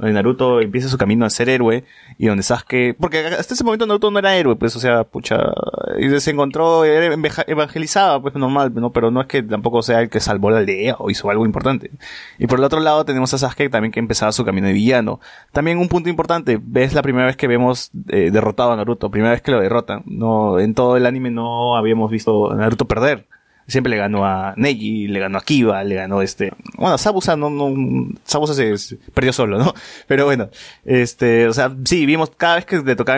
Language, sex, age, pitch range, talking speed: Spanish, male, 20-39, 115-140 Hz, 225 wpm